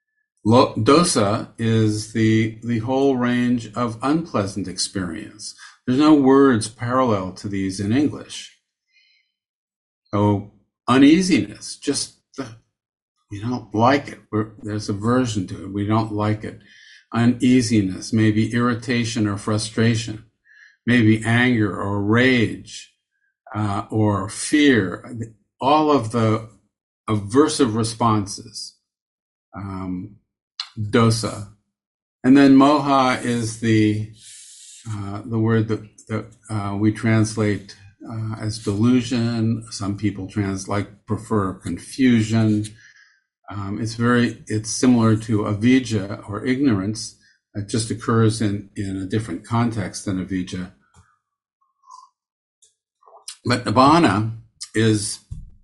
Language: English